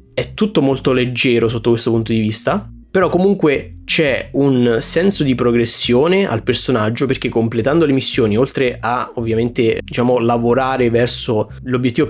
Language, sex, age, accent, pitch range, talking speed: Italian, male, 20-39, native, 115-130 Hz, 145 wpm